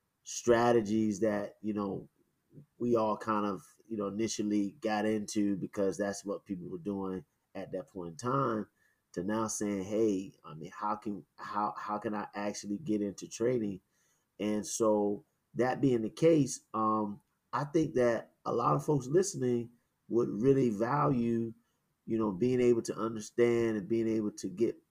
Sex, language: male, English